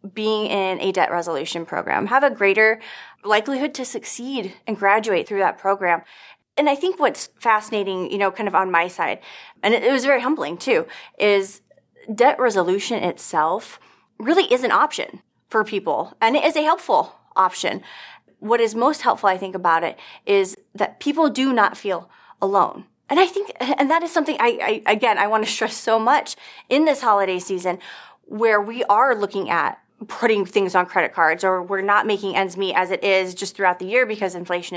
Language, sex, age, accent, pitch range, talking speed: English, female, 20-39, American, 190-255 Hz, 190 wpm